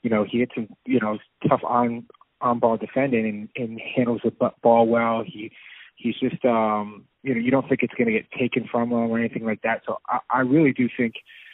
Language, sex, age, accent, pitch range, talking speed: English, male, 20-39, American, 110-130 Hz, 225 wpm